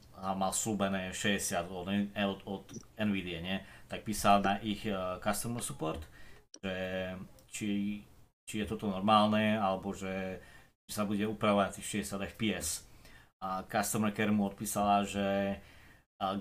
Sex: male